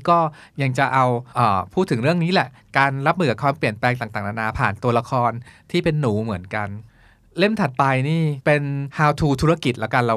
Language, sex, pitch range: Thai, male, 120-155 Hz